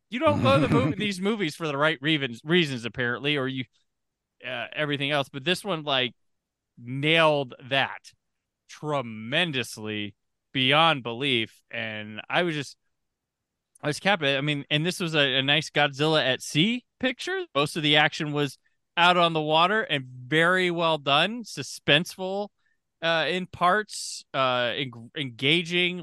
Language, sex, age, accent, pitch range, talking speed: English, male, 20-39, American, 130-170 Hz, 150 wpm